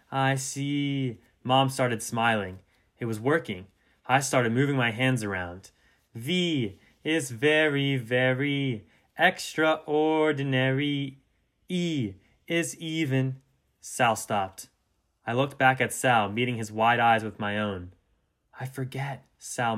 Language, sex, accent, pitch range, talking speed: English, male, American, 100-130 Hz, 120 wpm